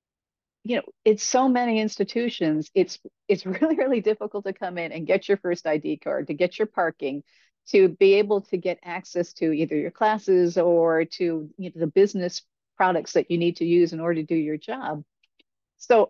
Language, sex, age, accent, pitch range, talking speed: English, female, 50-69, American, 160-205 Hz, 200 wpm